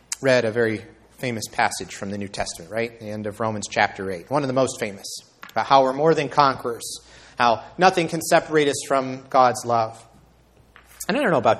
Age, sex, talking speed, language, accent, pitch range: 30-49, male, 205 wpm, English, American, 115-160 Hz